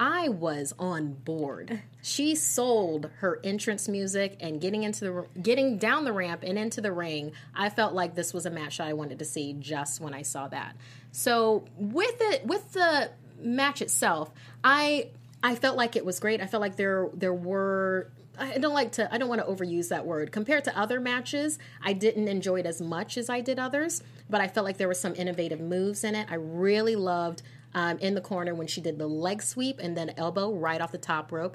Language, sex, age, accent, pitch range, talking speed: English, female, 30-49, American, 160-225 Hz, 220 wpm